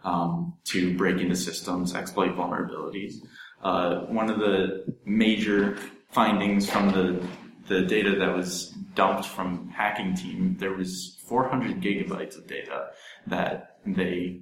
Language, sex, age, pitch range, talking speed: English, male, 20-39, 90-100 Hz, 130 wpm